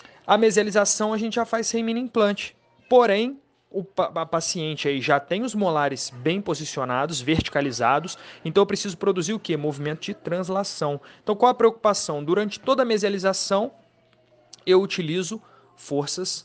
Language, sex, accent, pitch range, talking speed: Portuguese, male, Brazilian, 150-200 Hz, 155 wpm